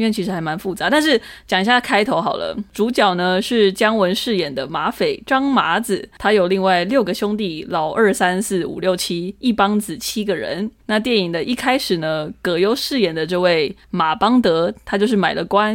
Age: 20-39